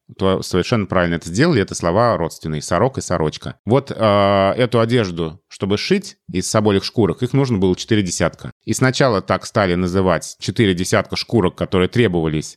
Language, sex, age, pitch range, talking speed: Russian, male, 30-49, 95-125 Hz, 165 wpm